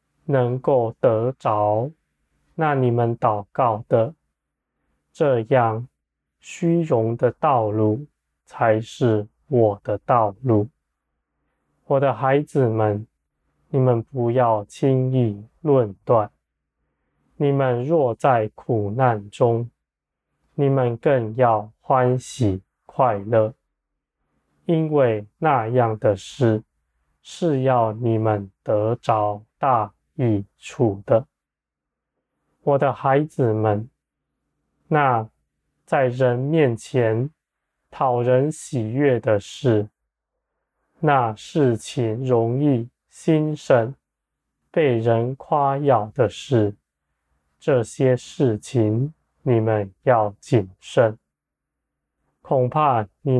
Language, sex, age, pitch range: Chinese, male, 20-39, 105-135 Hz